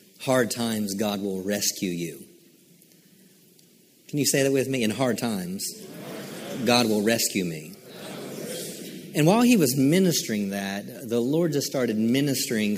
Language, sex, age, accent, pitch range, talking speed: English, male, 40-59, American, 110-140 Hz, 140 wpm